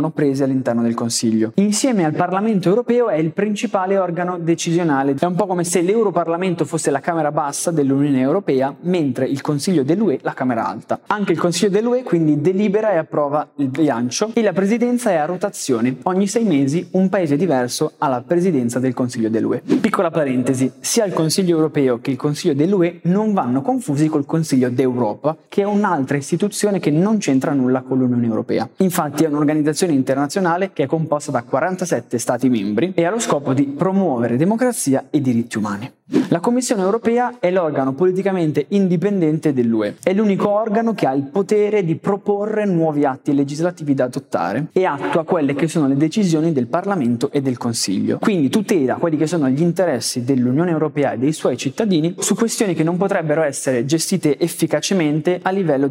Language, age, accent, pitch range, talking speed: Italian, 20-39, native, 140-190 Hz, 175 wpm